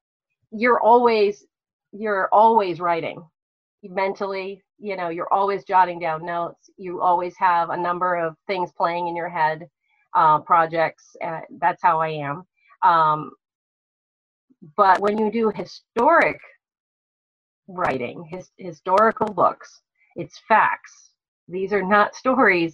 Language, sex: English, female